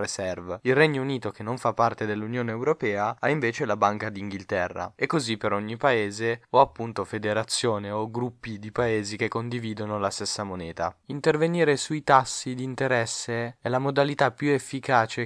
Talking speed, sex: 165 wpm, male